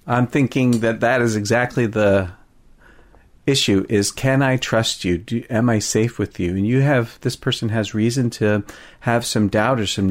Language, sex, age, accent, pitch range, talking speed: English, male, 40-59, American, 105-130 Hz, 190 wpm